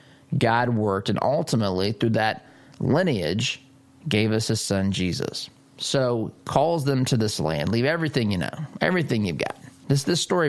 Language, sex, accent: English, male, American